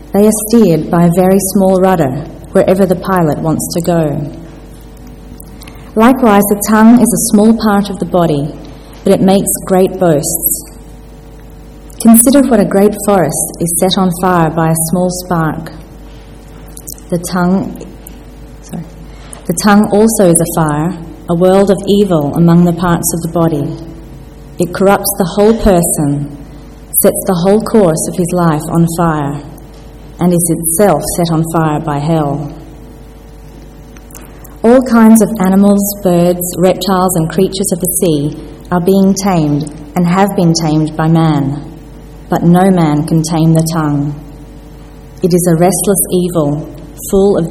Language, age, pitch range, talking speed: English, 30-49, 155-195 Hz, 150 wpm